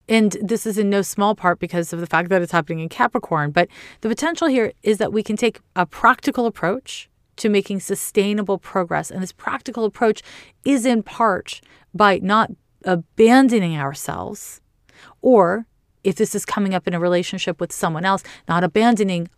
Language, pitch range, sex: English, 175-215 Hz, female